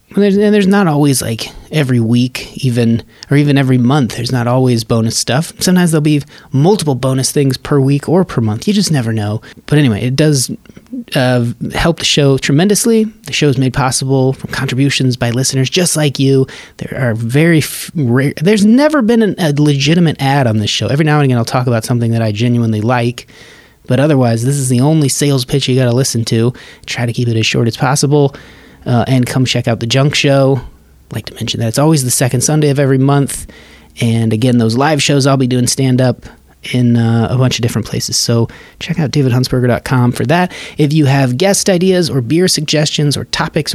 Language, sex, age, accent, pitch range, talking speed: English, male, 30-49, American, 120-150 Hz, 210 wpm